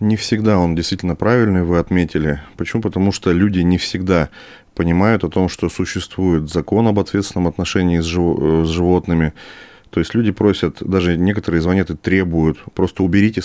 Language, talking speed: Russian, 155 wpm